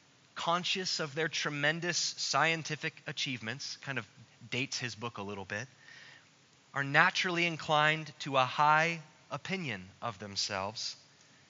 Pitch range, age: 150-220 Hz, 20-39